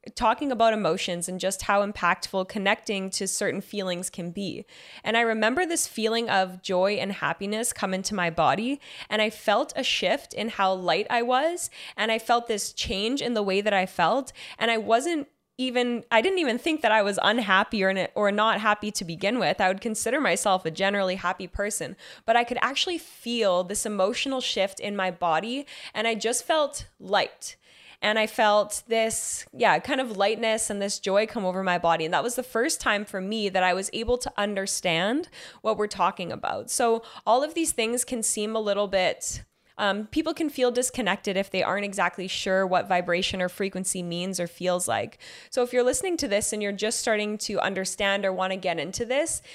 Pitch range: 190-235 Hz